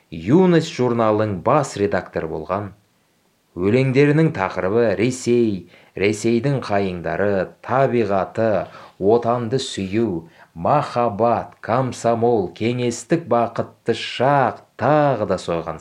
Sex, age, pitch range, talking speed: male, 30-49, 85-125 Hz, 80 wpm